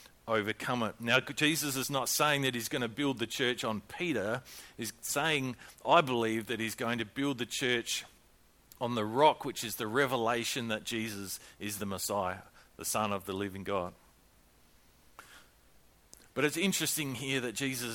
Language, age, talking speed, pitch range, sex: English, 40-59, 170 wpm, 110-140 Hz, male